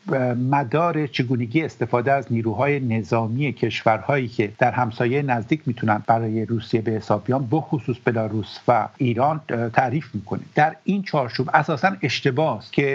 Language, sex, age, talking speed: English, male, 50-69, 135 wpm